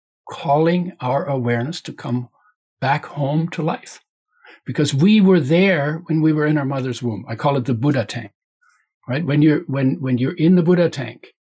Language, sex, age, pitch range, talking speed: English, male, 60-79, 125-160 Hz, 185 wpm